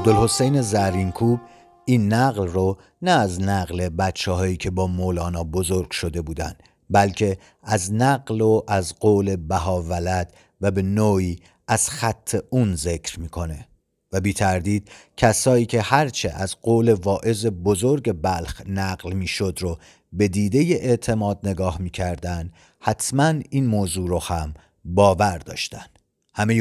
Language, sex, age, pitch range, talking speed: Persian, male, 50-69, 95-115 Hz, 135 wpm